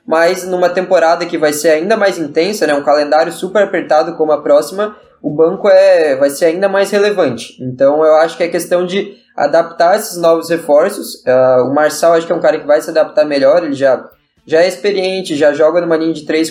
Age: 10-29